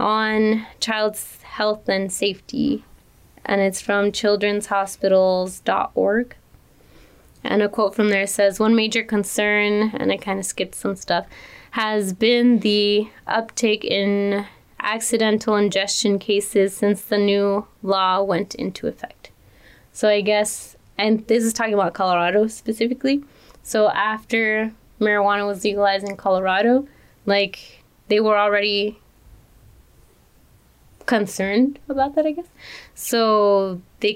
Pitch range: 195-220 Hz